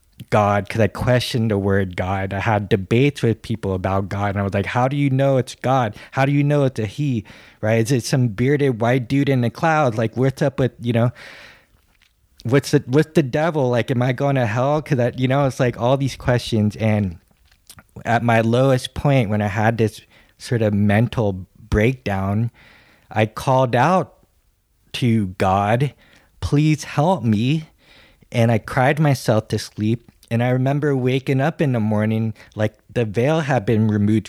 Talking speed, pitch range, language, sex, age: 185 wpm, 105-135 Hz, English, male, 20-39